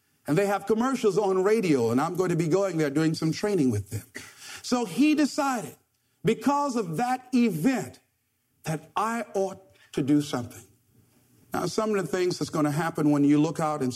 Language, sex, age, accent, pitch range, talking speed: English, male, 50-69, American, 125-180 Hz, 195 wpm